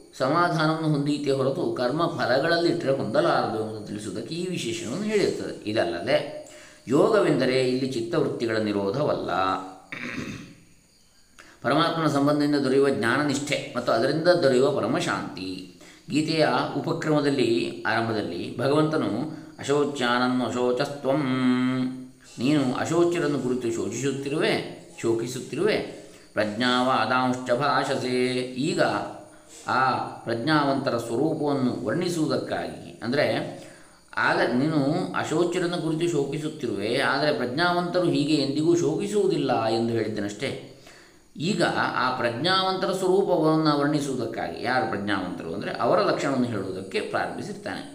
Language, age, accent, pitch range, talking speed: Kannada, 20-39, native, 125-160 Hz, 85 wpm